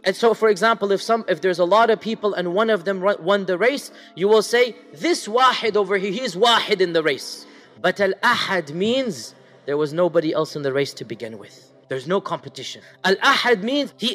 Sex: male